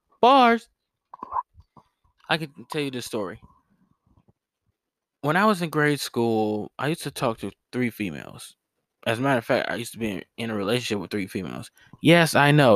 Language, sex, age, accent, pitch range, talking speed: English, male, 20-39, American, 105-135 Hz, 180 wpm